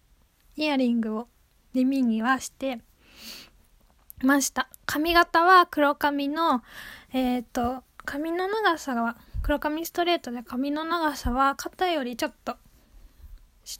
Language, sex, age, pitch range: Japanese, female, 20-39, 250-325 Hz